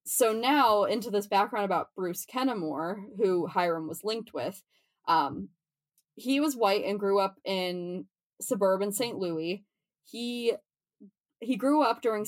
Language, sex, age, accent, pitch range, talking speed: English, female, 20-39, American, 175-220 Hz, 140 wpm